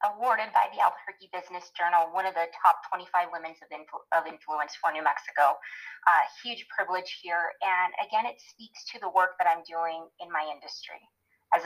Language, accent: English, American